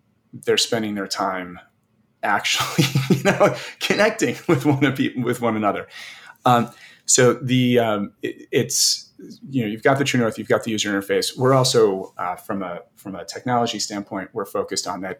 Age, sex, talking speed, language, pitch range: 30-49, male, 180 wpm, English, 100-130 Hz